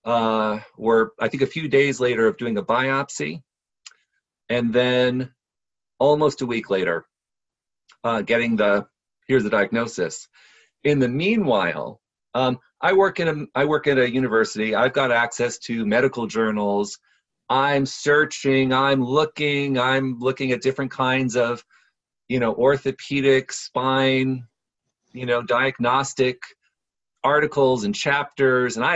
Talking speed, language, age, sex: 135 wpm, English, 40-59, male